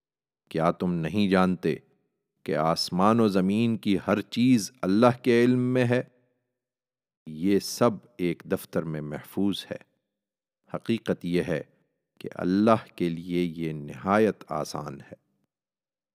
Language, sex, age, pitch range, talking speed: Urdu, male, 40-59, 90-120 Hz, 125 wpm